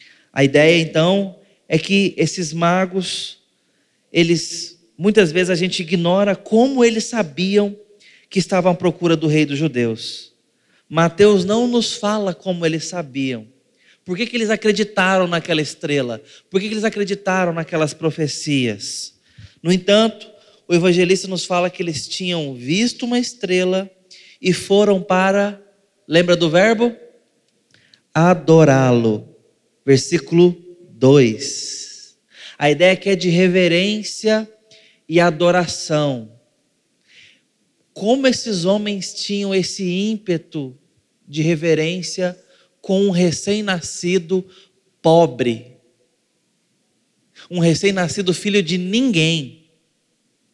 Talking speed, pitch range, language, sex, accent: 110 wpm, 160-200 Hz, Portuguese, male, Brazilian